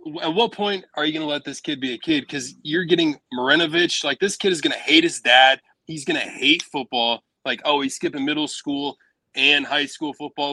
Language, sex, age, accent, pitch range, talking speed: English, male, 20-39, American, 125-175 Hz, 235 wpm